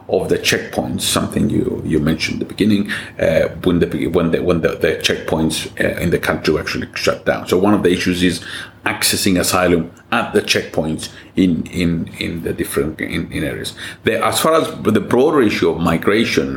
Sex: male